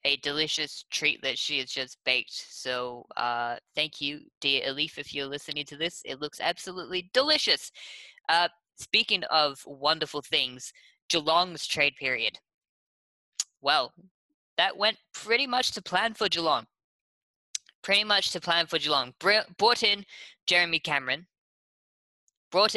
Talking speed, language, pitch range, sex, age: 135 wpm, English, 140-190 Hz, female, 10-29